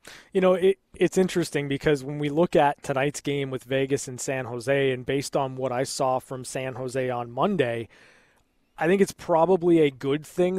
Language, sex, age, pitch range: English, male, 20-39, 140-170 Hz